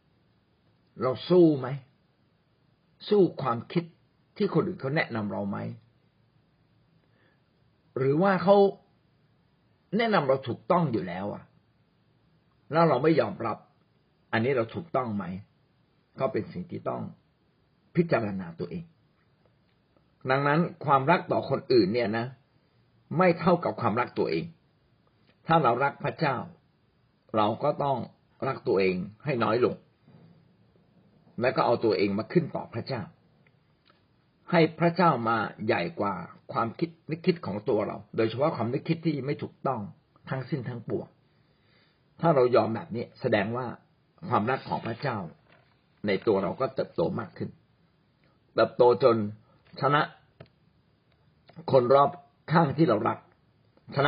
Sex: male